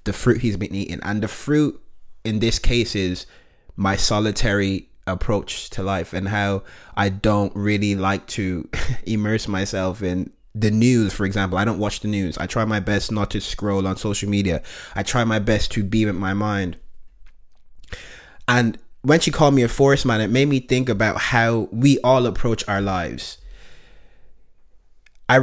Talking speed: 175 wpm